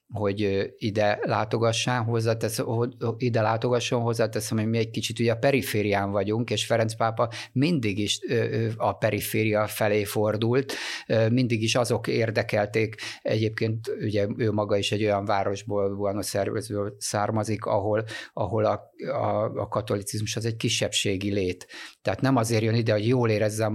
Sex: male